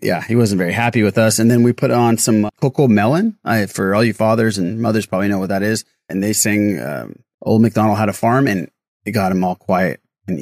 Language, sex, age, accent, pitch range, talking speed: English, male, 30-49, American, 105-140 Hz, 250 wpm